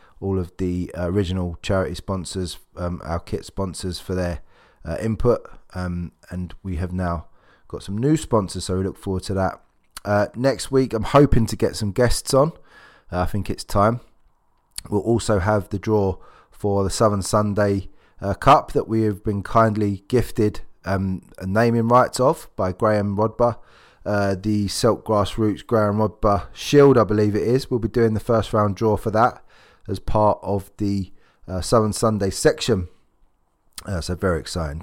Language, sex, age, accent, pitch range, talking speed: English, male, 20-39, British, 90-110 Hz, 175 wpm